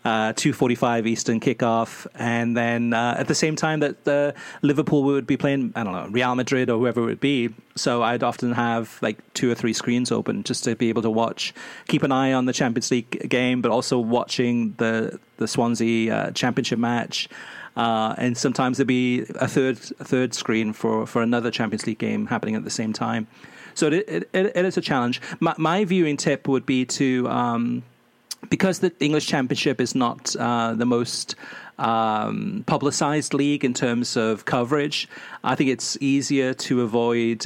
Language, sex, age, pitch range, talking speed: English, male, 30-49, 115-135 Hz, 190 wpm